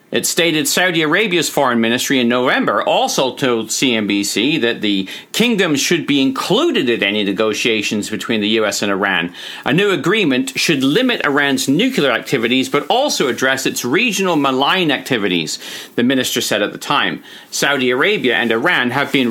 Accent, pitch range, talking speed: American, 110-150 Hz, 160 wpm